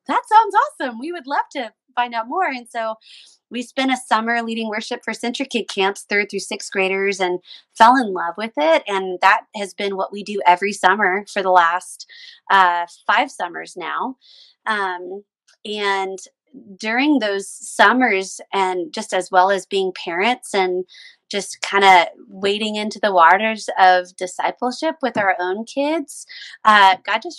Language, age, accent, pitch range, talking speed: English, 20-39, American, 190-240 Hz, 165 wpm